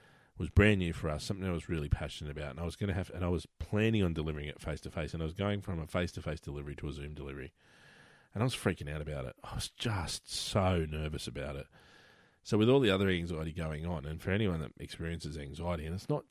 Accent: Australian